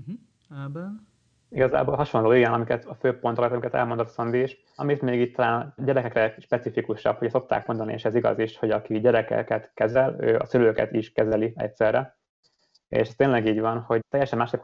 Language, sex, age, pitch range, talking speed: Hungarian, male, 20-39, 110-125 Hz, 160 wpm